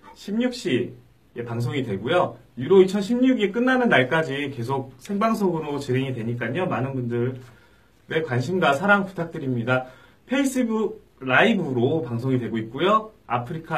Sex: male